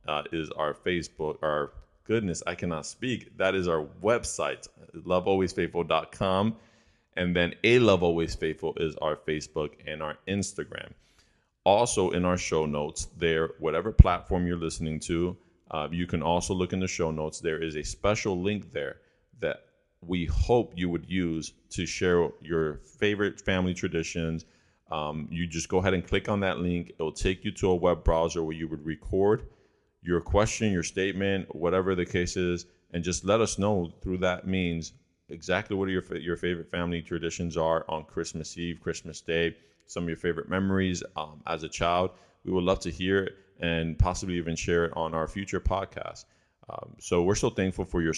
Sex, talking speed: male, 180 wpm